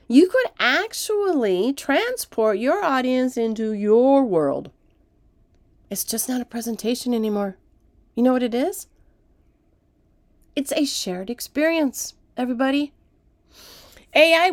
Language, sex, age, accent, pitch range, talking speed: English, female, 40-59, American, 200-305 Hz, 105 wpm